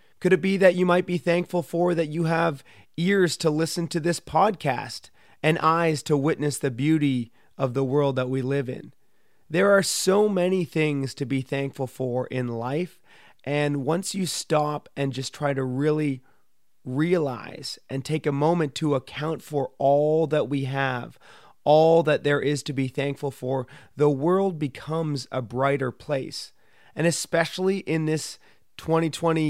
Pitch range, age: 135-160 Hz, 30-49